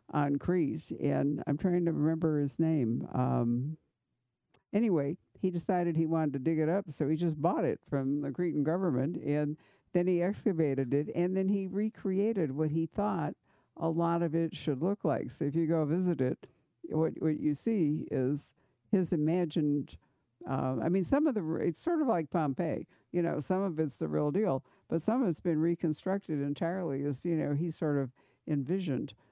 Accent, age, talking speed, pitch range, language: American, 60-79, 190 wpm, 155-190 Hz, English